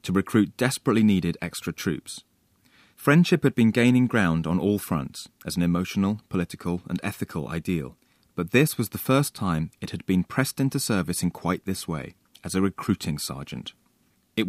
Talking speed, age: 175 wpm, 30-49